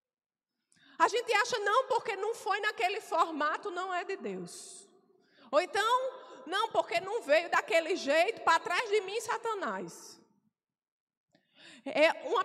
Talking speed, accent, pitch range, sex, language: 130 wpm, Brazilian, 250-360 Hz, female, Portuguese